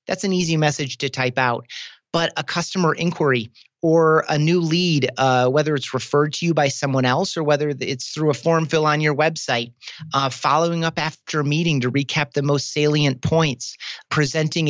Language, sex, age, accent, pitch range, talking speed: English, male, 30-49, American, 135-165 Hz, 190 wpm